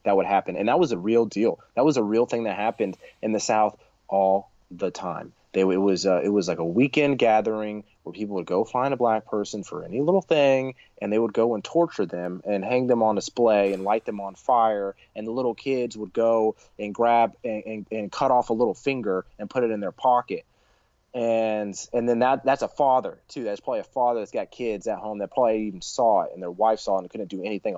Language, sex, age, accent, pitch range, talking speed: English, male, 30-49, American, 105-125 Hz, 245 wpm